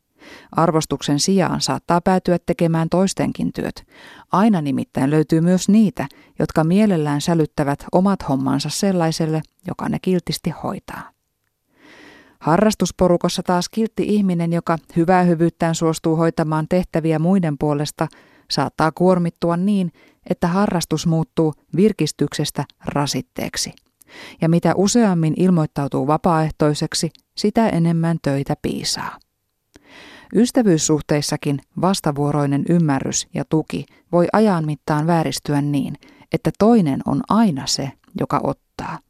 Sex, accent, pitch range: female, native, 150-185 Hz